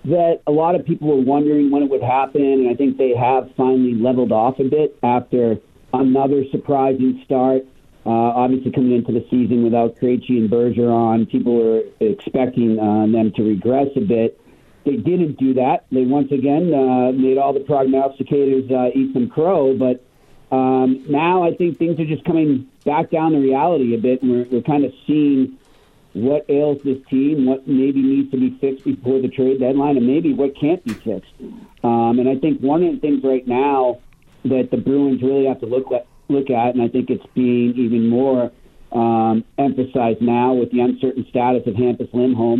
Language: English